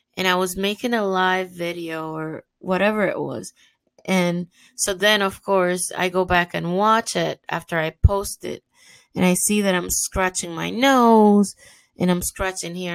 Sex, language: female, English